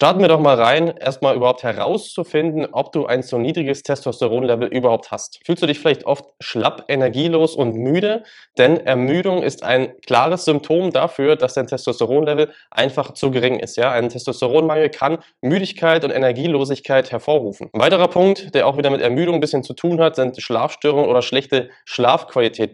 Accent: German